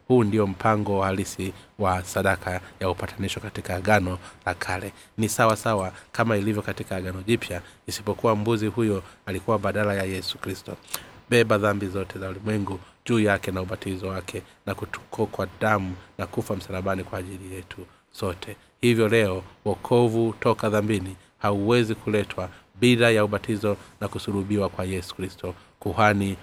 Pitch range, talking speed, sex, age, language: 95-110 Hz, 150 wpm, male, 30-49, Swahili